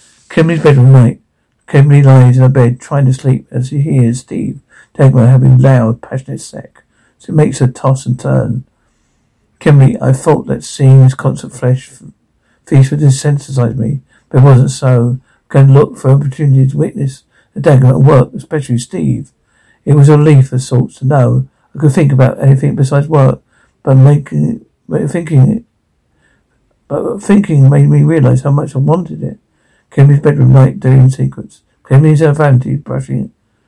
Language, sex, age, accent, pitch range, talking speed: English, male, 60-79, British, 125-145 Hz, 170 wpm